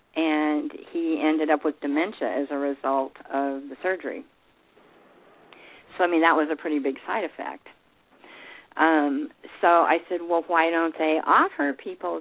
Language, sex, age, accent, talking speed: English, female, 50-69, American, 155 wpm